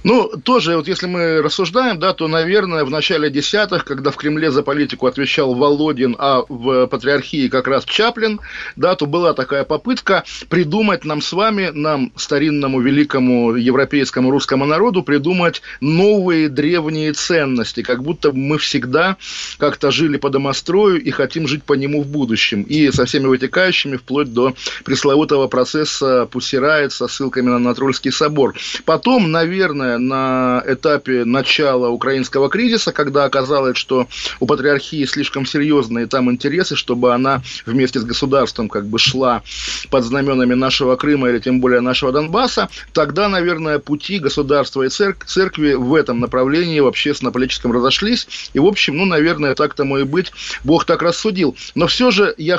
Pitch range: 130-165 Hz